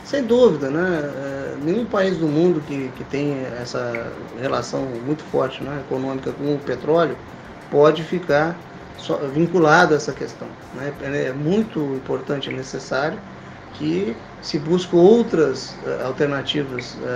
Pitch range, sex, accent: 135-180 Hz, male, Brazilian